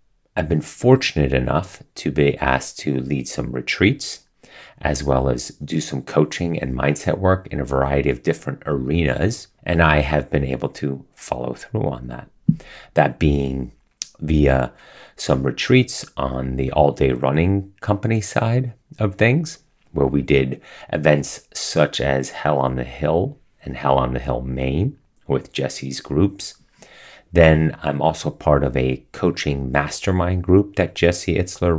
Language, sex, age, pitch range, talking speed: English, male, 30-49, 65-90 Hz, 155 wpm